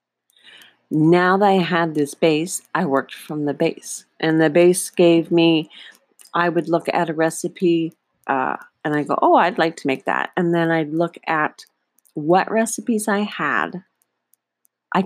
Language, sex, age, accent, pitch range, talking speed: English, female, 40-59, American, 150-190 Hz, 165 wpm